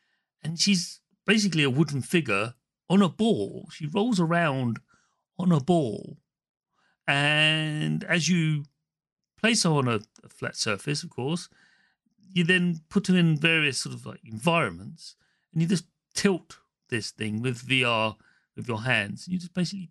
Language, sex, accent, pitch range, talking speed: English, male, British, 120-180 Hz, 155 wpm